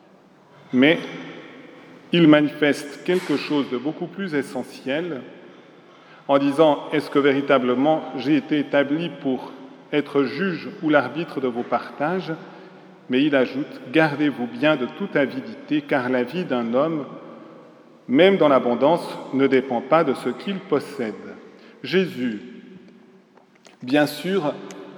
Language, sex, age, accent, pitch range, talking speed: French, male, 40-59, French, 145-210 Hz, 125 wpm